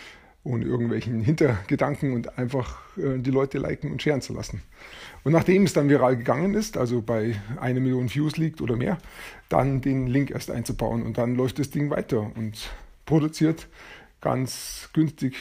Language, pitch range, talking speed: German, 120-140 Hz, 165 wpm